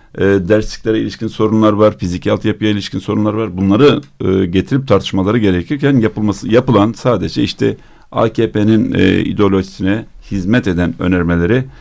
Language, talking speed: Turkish, 125 wpm